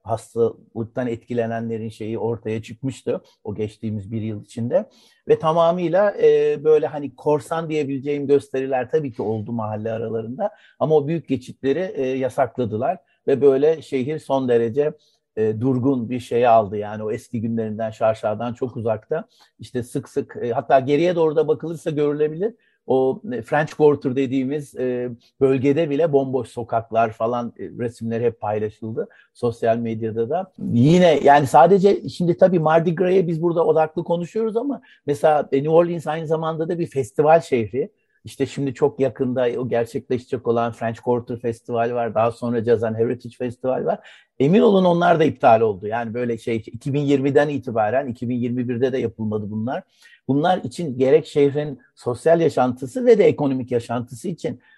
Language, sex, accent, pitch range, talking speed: Turkish, male, native, 115-155 Hz, 150 wpm